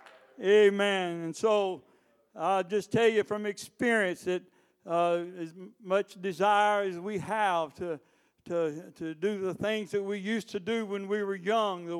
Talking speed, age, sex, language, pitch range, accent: 165 wpm, 60-79, male, English, 165-210 Hz, American